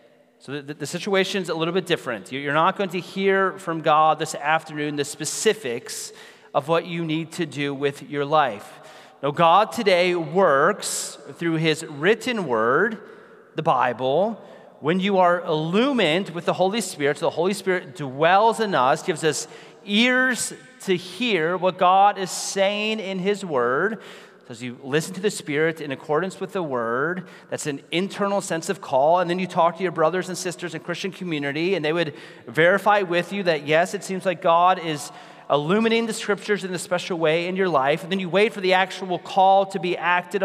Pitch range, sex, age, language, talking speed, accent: 155-195 Hz, male, 30-49, English, 190 wpm, American